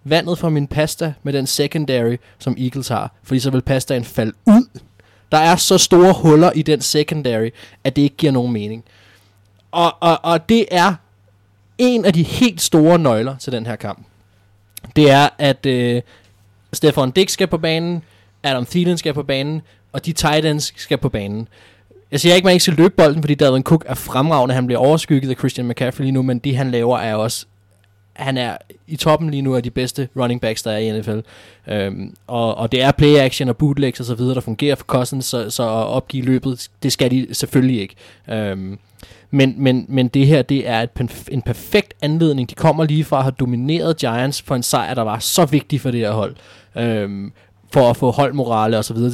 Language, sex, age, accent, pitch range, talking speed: Danish, male, 20-39, native, 110-150 Hz, 205 wpm